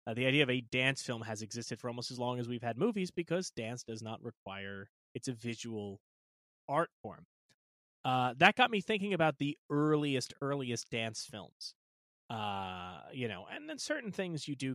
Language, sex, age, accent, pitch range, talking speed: English, male, 30-49, American, 110-150 Hz, 190 wpm